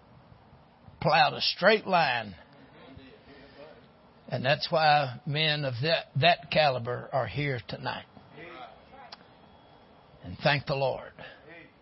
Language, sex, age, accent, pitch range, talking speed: English, male, 60-79, American, 135-175 Hz, 95 wpm